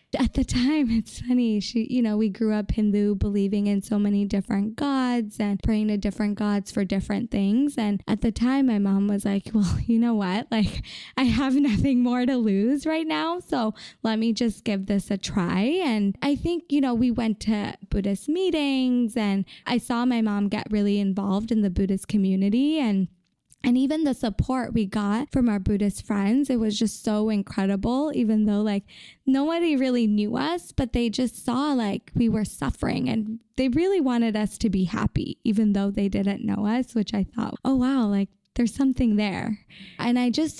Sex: female